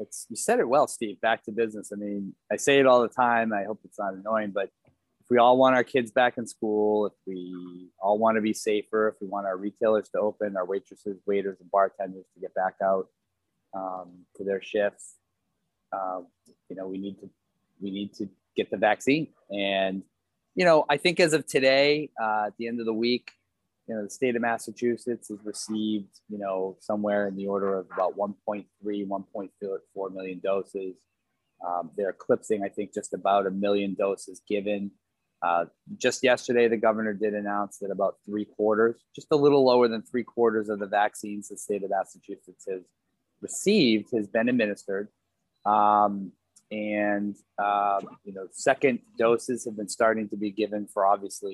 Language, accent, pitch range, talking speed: English, American, 100-115 Hz, 190 wpm